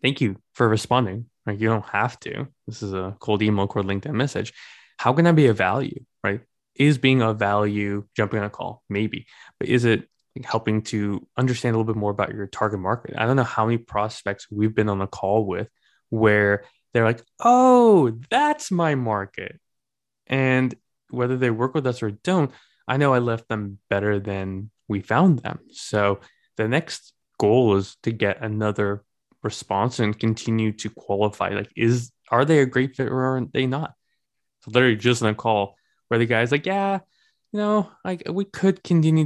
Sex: male